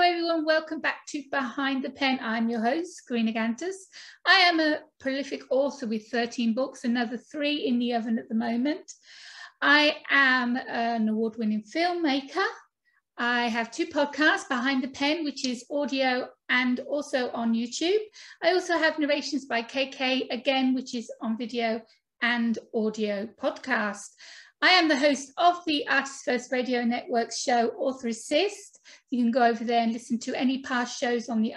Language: English